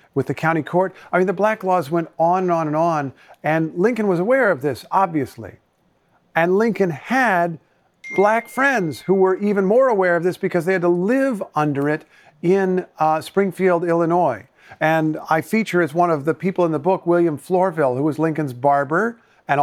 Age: 50-69